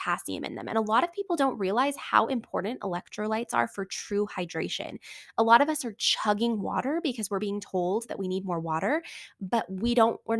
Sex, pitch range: female, 190-235 Hz